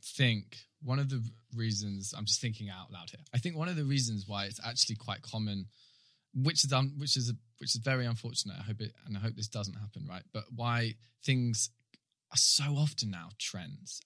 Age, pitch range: 20-39, 110-135 Hz